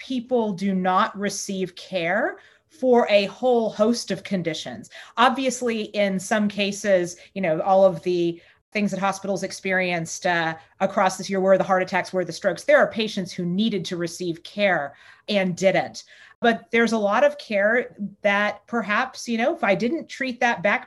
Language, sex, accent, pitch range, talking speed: English, female, American, 195-235 Hz, 175 wpm